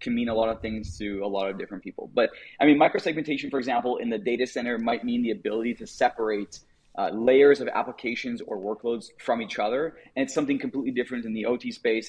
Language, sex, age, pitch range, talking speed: English, male, 30-49, 110-150 Hz, 230 wpm